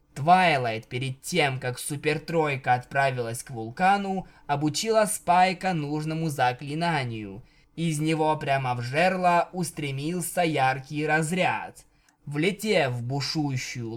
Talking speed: 100 wpm